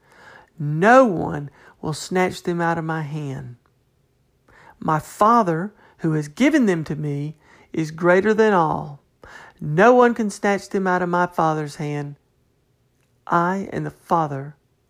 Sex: male